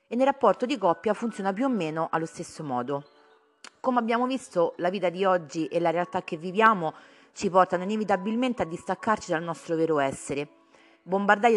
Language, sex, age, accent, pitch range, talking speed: Italian, female, 30-49, native, 160-215 Hz, 175 wpm